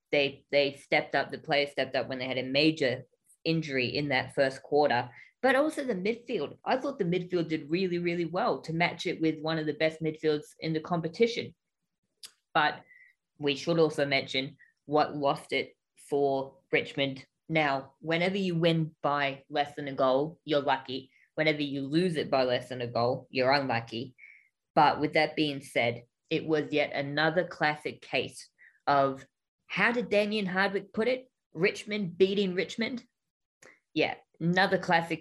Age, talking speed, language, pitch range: 20-39, 165 wpm, English, 140-185 Hz